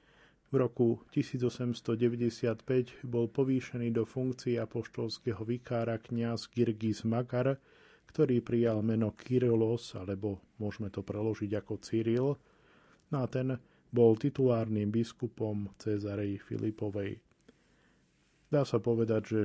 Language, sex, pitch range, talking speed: Slovak, male, 110-125 Hz, 100 wpm